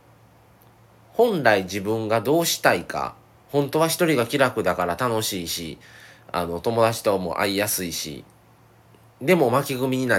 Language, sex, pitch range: Japanese, male, 100-140 Hz